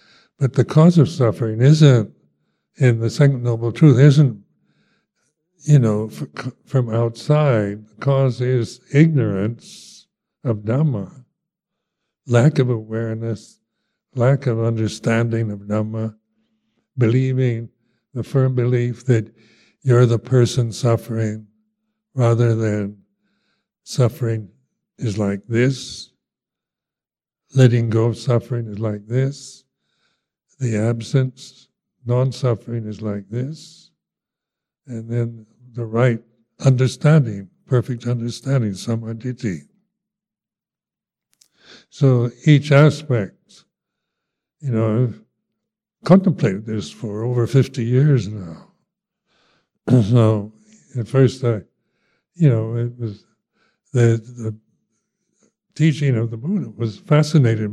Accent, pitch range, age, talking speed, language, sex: American, 115-140 Hz, 60-79, 100 wpm, English, male